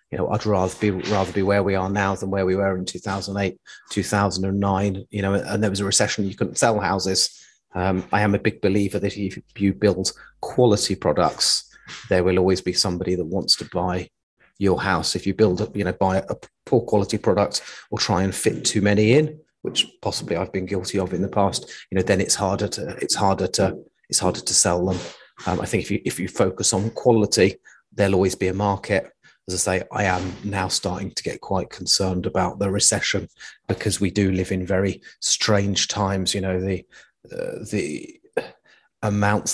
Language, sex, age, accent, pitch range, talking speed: English, male, 30-49, British, 95-105 Hz, 215 wpm